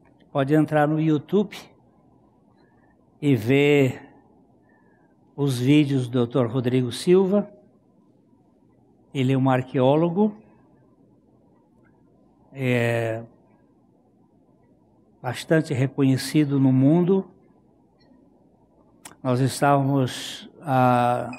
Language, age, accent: Portuguese, 60-79, Brazilian